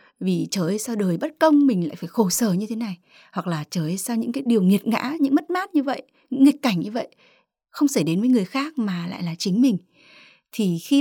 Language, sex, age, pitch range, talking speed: Vietnamese, female, 20-39, 180-255 Hz, 250 wpm